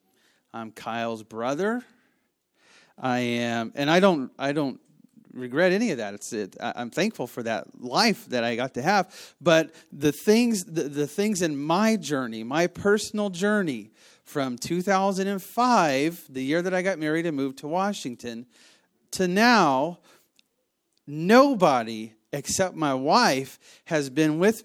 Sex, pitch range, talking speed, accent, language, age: male, 140-195 Hz, 145 wpm, American, English, 40-59